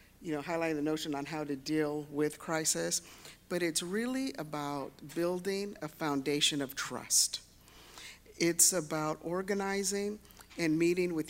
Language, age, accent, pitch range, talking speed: English, 50-69, American, 140-175 Hz, 140 wpm